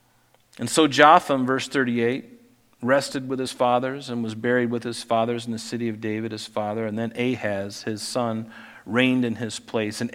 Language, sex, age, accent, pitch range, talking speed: English, male, 40-59, American, 115-140 Hz, 190 wpm